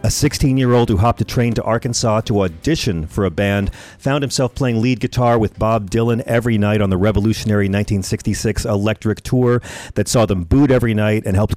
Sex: male